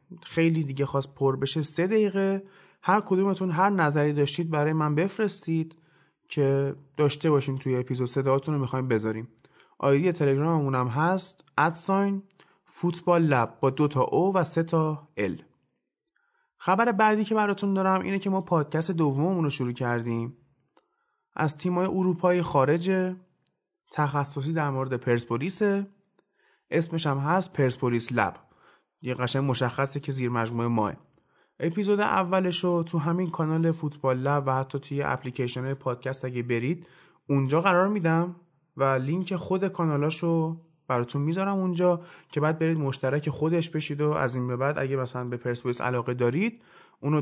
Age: 30-49